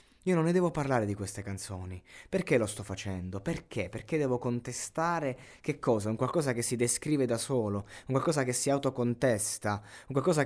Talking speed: 185 wpm